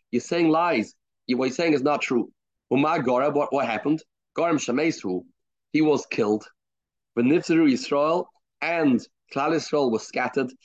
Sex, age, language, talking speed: male, 30-49, English, 140 wpm